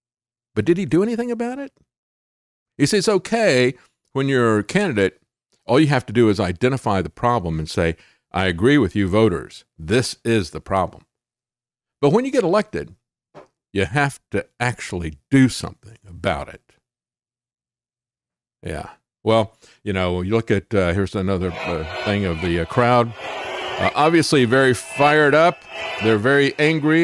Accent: American